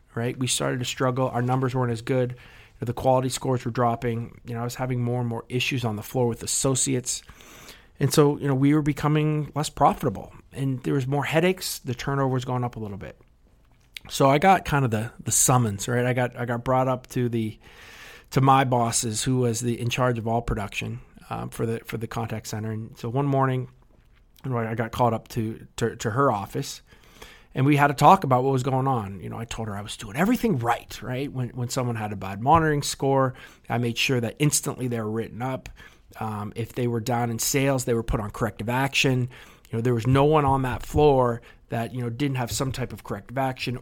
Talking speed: 235 wpm